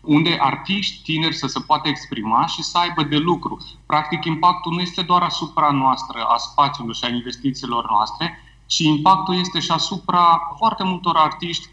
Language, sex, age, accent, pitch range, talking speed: Romanian, male, 30-49, native, 130-165 Hz, 170 wpm